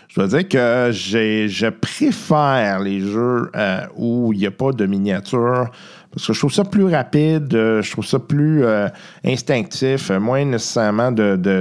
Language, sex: French, male